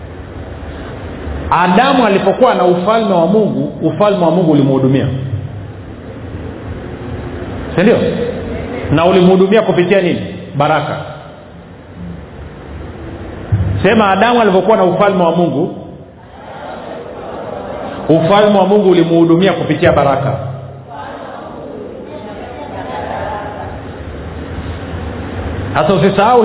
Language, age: Swahili, 50-69